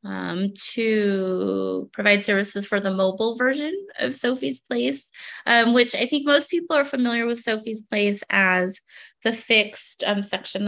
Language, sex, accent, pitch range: English, female, American, 185-245 Hz